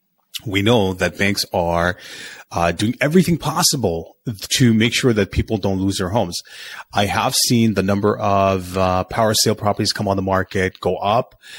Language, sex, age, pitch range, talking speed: English, male, 30-49, 90-110 Hz, 175 wpm